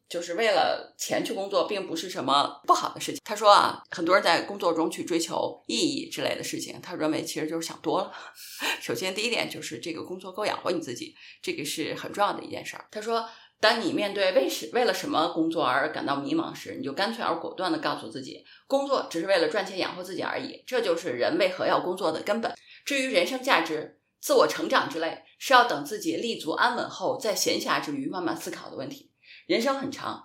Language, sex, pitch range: Chinese, female, 190-315 Hz